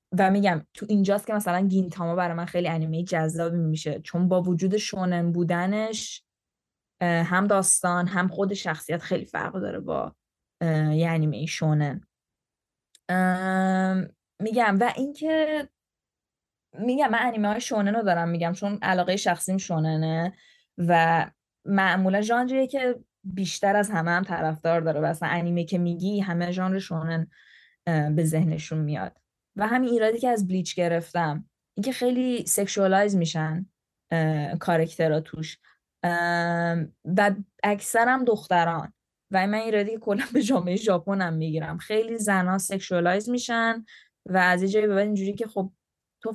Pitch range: 170-205 Hz